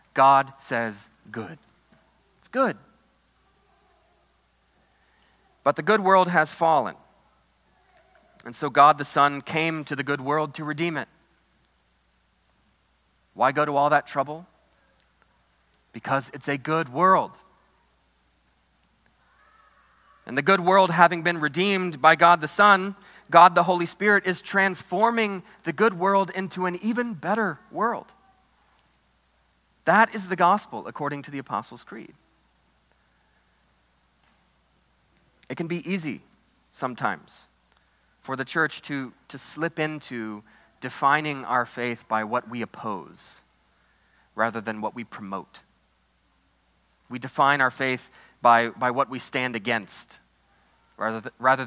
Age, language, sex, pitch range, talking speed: 30-49, English, male, 105-170 Hz, 120 wpm